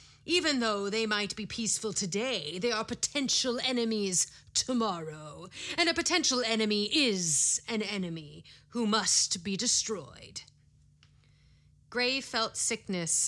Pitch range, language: 185-245 Hz, English